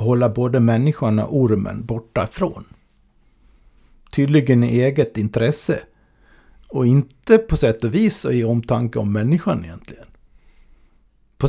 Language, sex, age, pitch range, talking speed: Swedish, male, 50-69, 110-150 Hz, 120 wpm